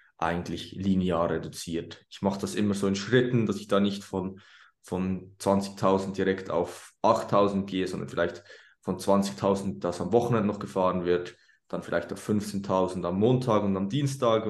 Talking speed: 165 wpm